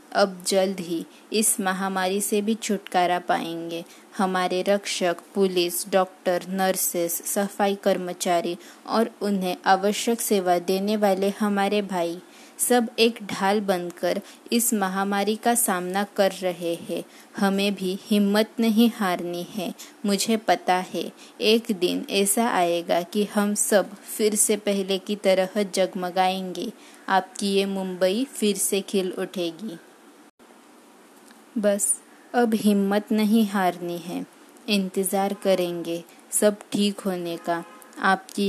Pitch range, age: 180-210 Hz, 20-39